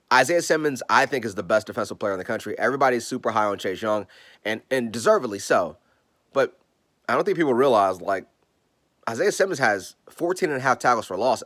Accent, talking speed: American, 190 wpm